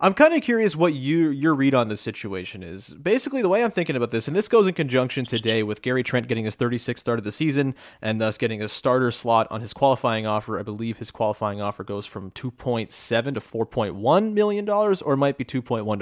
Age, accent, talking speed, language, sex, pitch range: 30-49, American, 230 wpm, English, male, 110-140 Hz